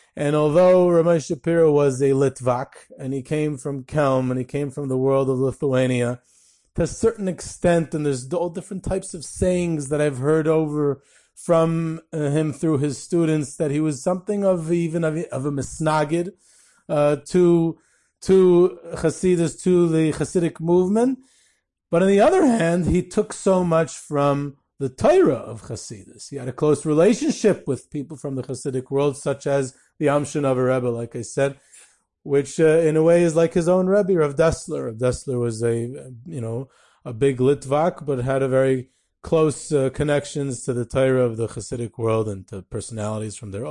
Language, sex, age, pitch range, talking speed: English, male, 30-49, 130-165 Hz, 180 wpm